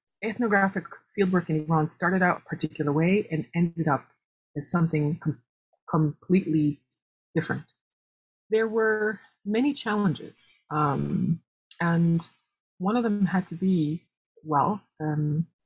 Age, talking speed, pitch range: 30-49, 115 wpm, 160-200 Hz